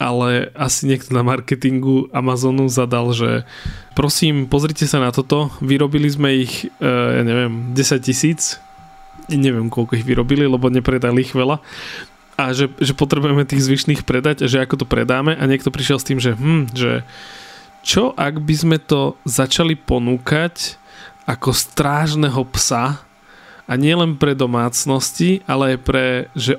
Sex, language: male, Slovak